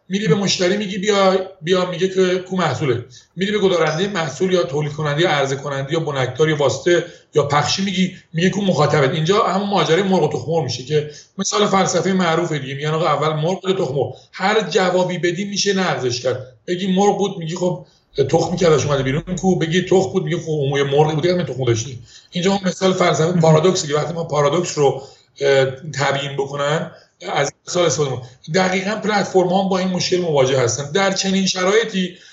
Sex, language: male, Persian